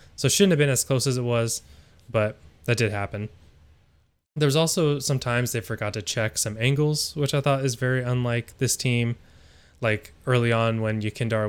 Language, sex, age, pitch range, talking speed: English, male, 20-39, 105-125 Hz, 185 wpm